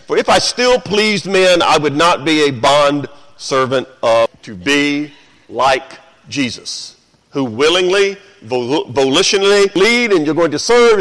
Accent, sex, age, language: American, male, 50-69, English